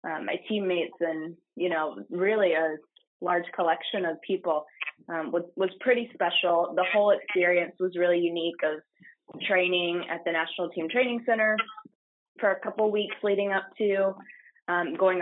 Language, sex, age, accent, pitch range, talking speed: English, female, 20-39, American, 170-205 Hz, 160 wpm